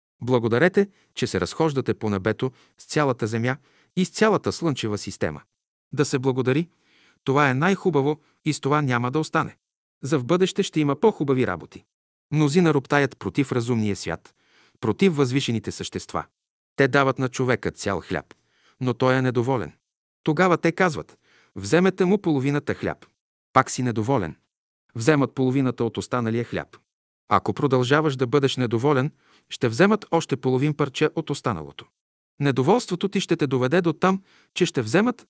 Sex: male